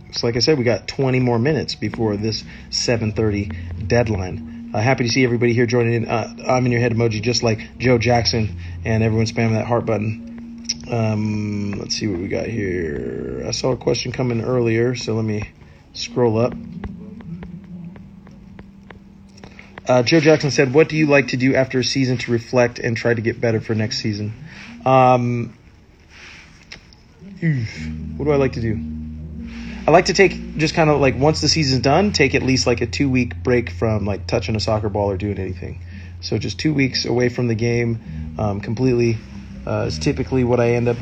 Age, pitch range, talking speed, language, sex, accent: 30-49, 100-125 Hz, 190 wpm, English, male, American